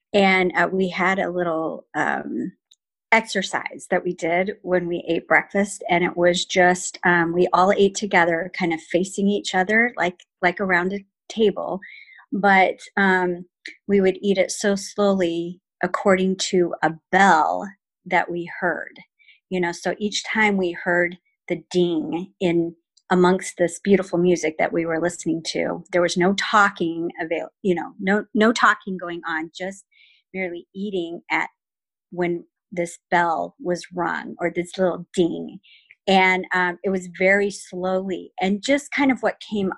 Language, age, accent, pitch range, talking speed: English, 40-59, American, 175-200 Hz, 160 wpm